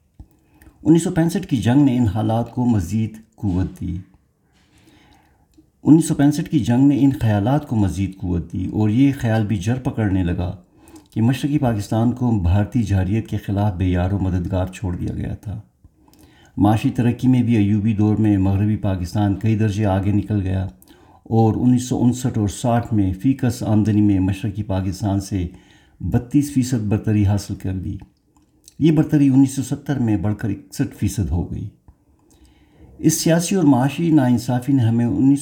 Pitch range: 100-120 Hz